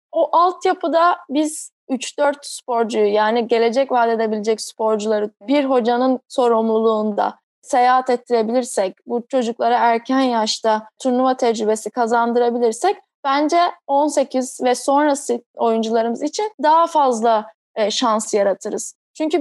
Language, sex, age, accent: Turkish, female, 10-29, native